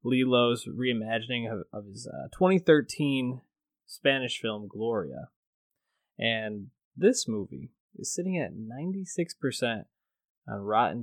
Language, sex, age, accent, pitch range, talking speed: English, male, 20-39, American, 110-140 Hz, 110 wpm